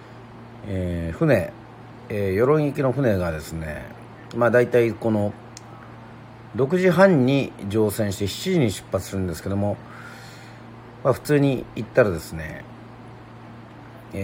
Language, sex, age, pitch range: Japanese, male, 40-59, 95-125 Hz